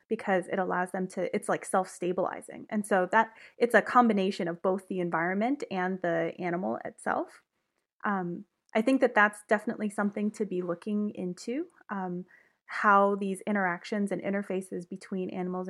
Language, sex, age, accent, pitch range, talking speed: English, female, 20-39, American, 185-230 Hz, 155 wpm